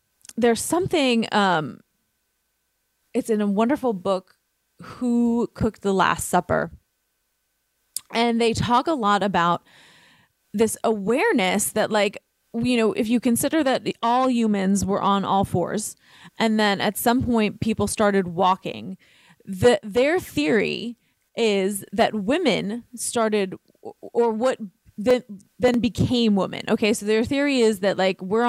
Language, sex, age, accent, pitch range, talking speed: English, female, 20-39, American, 195-235 Hz, 135 wpm